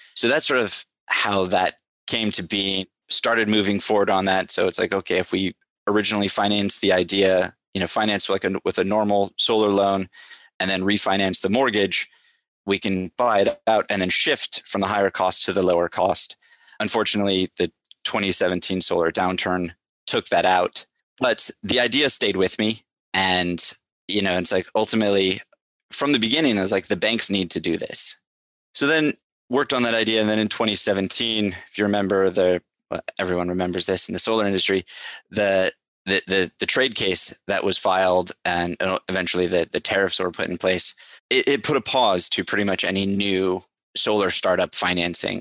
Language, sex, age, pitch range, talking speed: English, male, 20-39, 95-105 Hz, 185 wpm